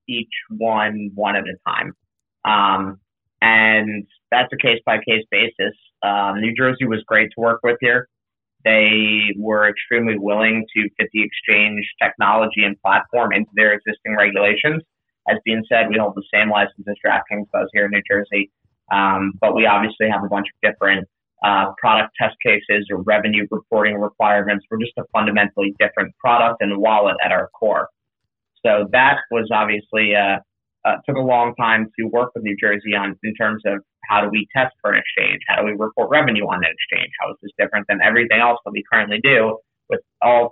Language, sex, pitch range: English, male, 105-115 Hz